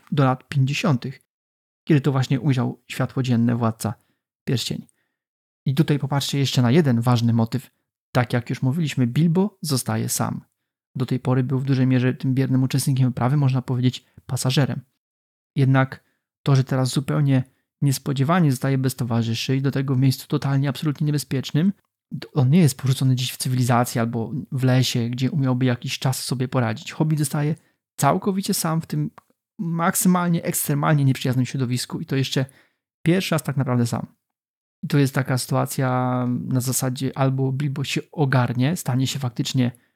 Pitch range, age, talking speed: 125-145 Hz, 30-49, 160 wpm